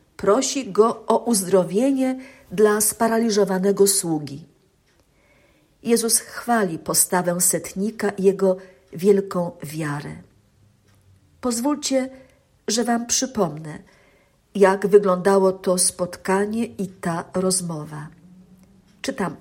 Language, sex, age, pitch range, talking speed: Polish, female, 50-69, 180-230 Hz, 85 wpm